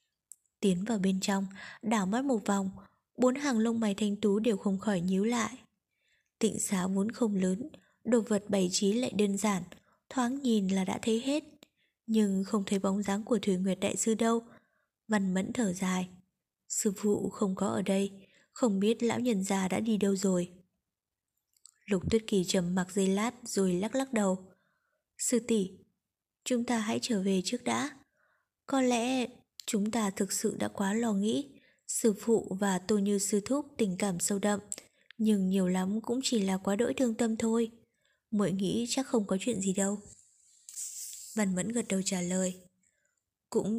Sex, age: female, 20-39